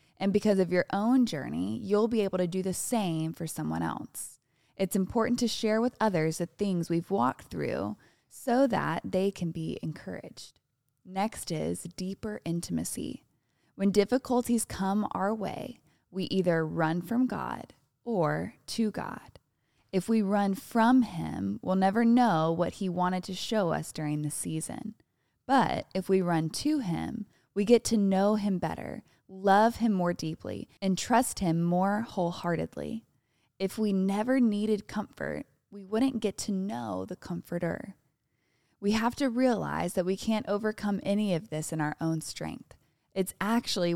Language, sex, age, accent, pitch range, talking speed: English, female, 20-39, American, 170-220 Hz, 160 wpm